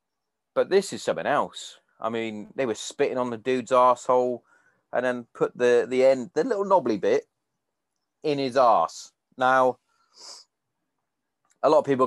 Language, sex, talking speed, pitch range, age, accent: English, male, 160 wpm, 125-160 Hz, 30-49, British